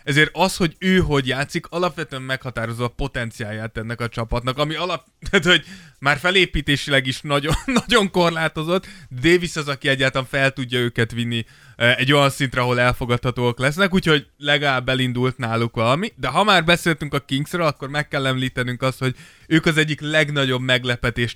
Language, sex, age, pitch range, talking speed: Hungarian, male, 20-39, 125-155 Hz, 155 wpm